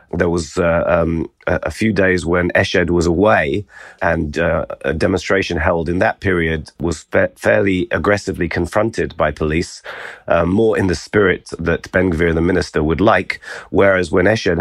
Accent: British